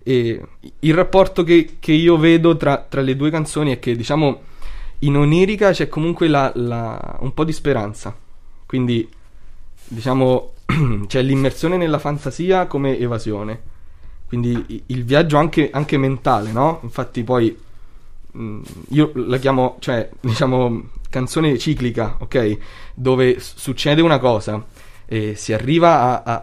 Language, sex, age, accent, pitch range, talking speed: Italian, male, 20-39, native, 110-145 Hz, 140 wpm